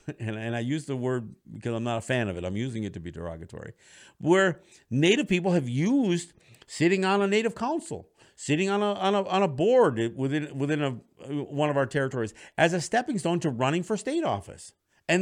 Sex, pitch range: male, 130-195 Hz